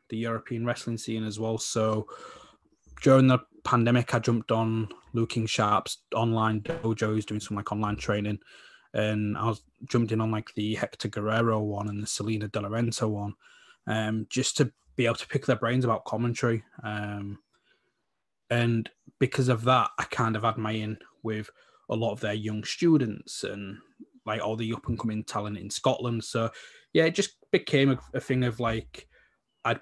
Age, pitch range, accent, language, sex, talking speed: 20-39, 110-125 Hz, British, English, male, 180 wpm